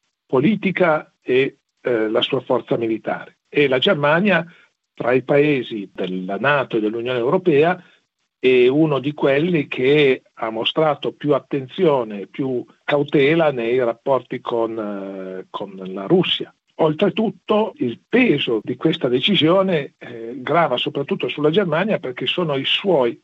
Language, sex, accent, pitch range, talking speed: Italian, male, native, 120-170 Hz, 130 wpm